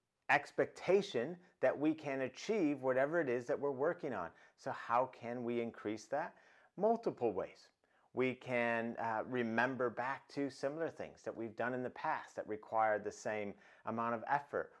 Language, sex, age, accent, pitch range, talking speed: English, male, 30-49, American, 110-140 Hz, 165 wpm